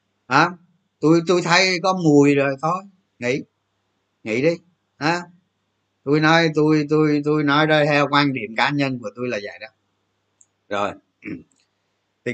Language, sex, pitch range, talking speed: Vietnamese, male, 105-155 Hz, 155 wpm